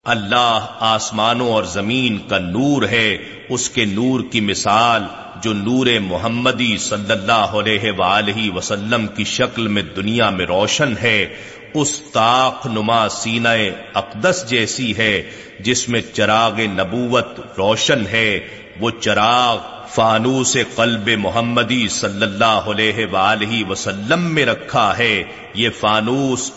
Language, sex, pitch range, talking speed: Urdu, male, 110-125 Hz, 120 wpm